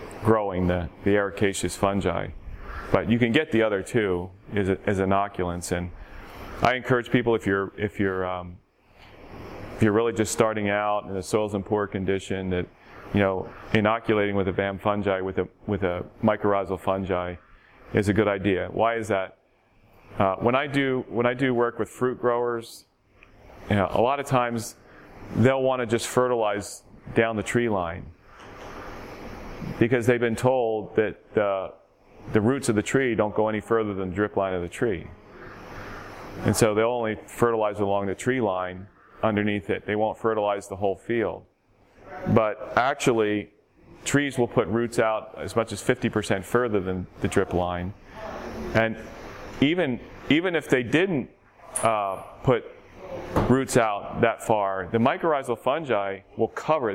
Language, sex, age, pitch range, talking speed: English, male, 40-59, 95-115 Hz, 165 wpm